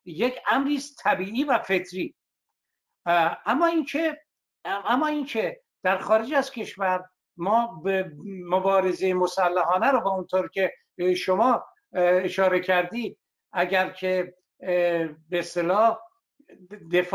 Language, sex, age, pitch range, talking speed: Persian, male, 60-79, 180-225 Hz, 100 wpm